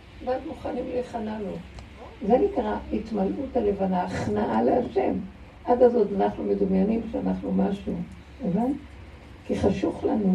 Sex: female